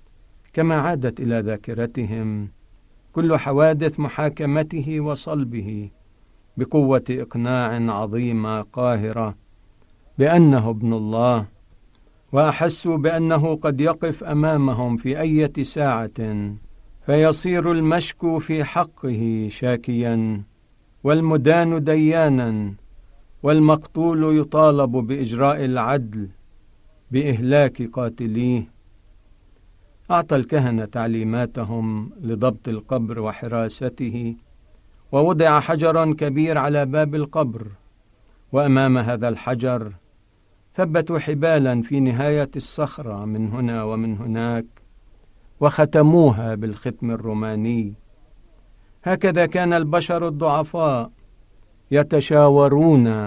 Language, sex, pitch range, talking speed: Arabic, male, 110-150 Hz, 75 wpm